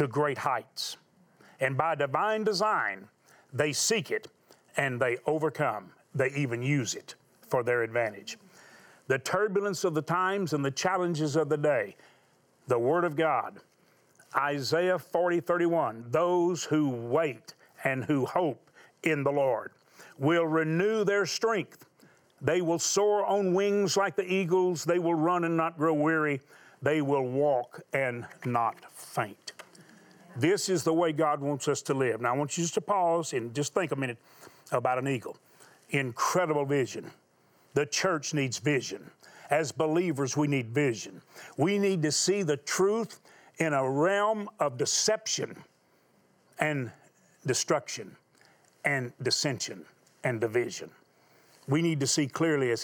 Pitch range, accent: 135-175 Hz, American